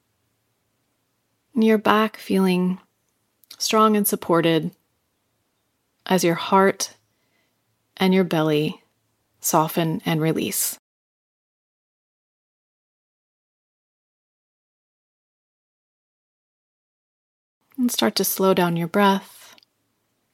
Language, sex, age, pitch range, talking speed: English, female, 30-49, 160-200 Hz, 70 wpm